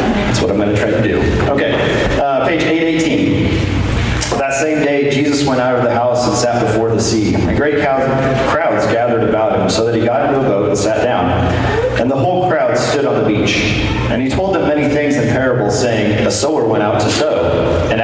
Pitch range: 100-125 Hz